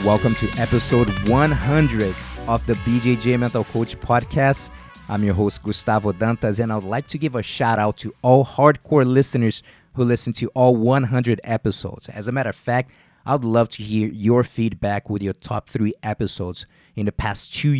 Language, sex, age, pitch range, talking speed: English, male, 30-49, 110-130 Hz, 180 wpm